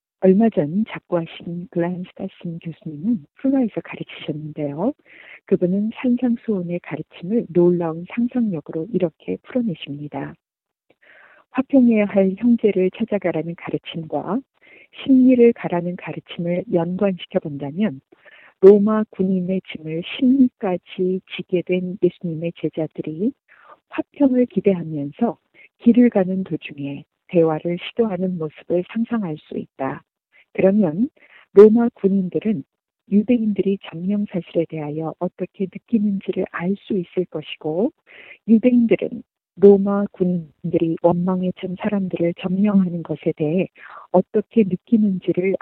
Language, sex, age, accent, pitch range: Korean, female, 40-59, native, 170-210 Hz